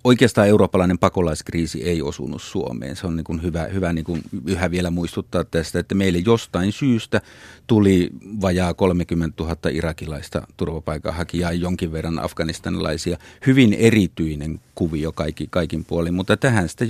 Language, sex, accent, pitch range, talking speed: Finnish, male, native, 85-100 Hz, 140 wpm